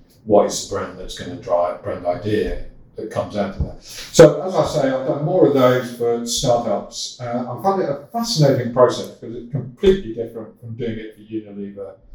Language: English